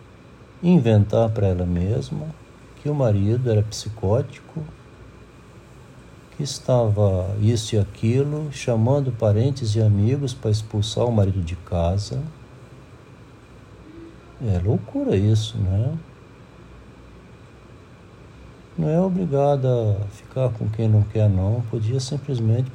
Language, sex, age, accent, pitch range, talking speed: Portuguese, male, 60-79, Brazilian, 95-125 Hz, 110 wpm